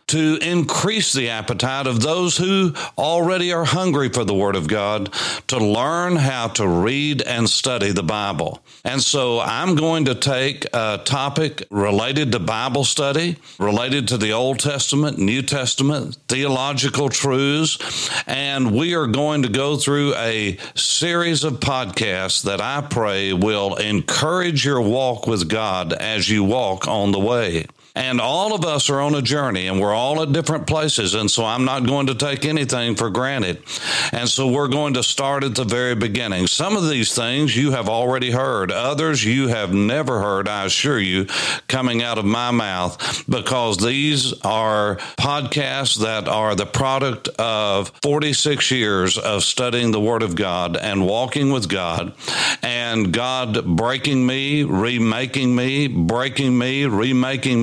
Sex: male